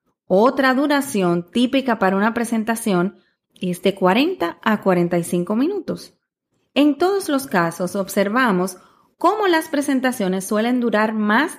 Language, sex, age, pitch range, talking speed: Spanish, female, 30-49, 200-280 Hz, 120 wpm